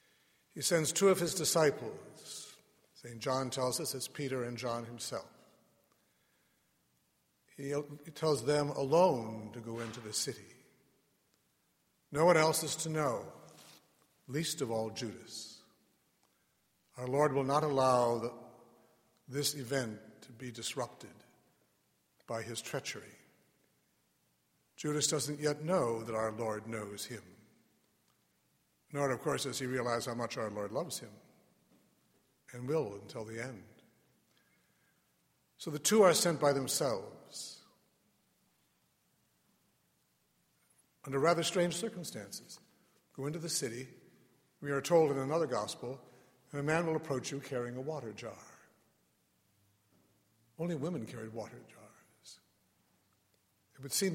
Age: 60-79